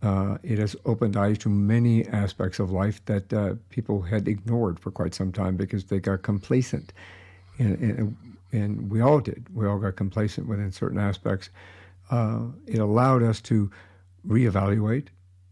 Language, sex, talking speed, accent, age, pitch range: English, male, 160 wpm, American, 60-79, 95-110 Hz